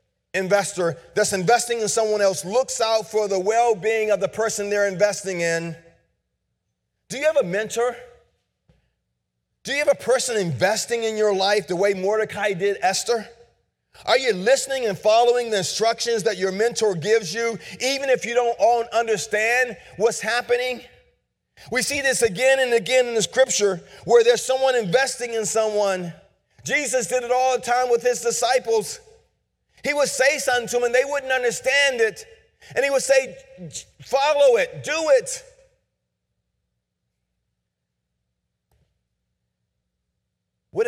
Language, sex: English, male